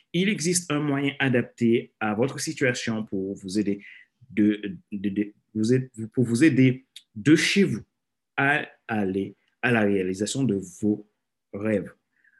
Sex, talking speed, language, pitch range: male, 140 wpm, French, 105-140 Hz